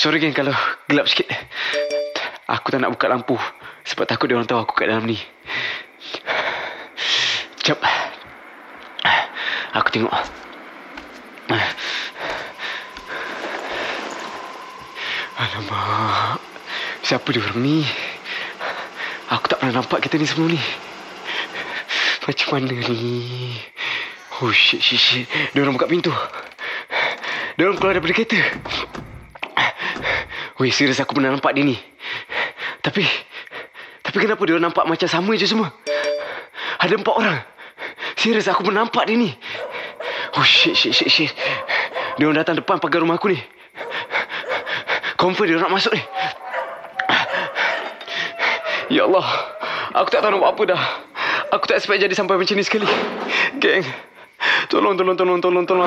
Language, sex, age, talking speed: Malay, male, 20-39, 120 wpm